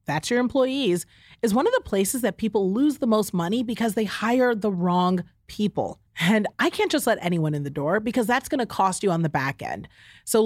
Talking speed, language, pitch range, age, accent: 230 wpm, English, 175-250 Hz, 30-49, American